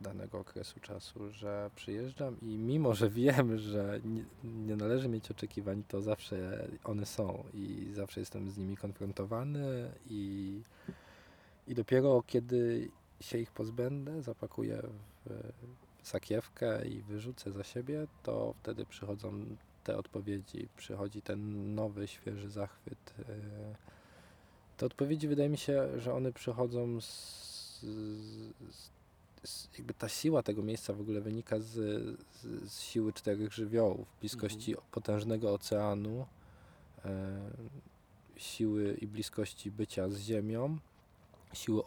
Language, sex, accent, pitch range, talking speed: Polish, male, native, 100-115 Hz, 115 wpm